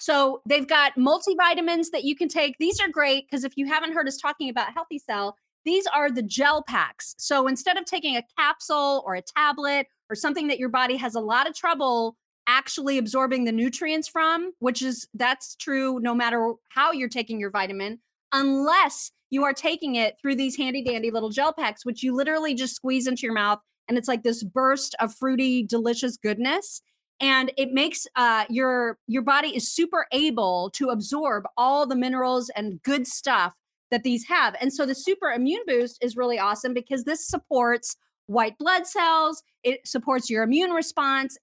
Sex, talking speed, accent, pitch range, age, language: female, 190 wpm, American, 235-290 Hz, 30-49, English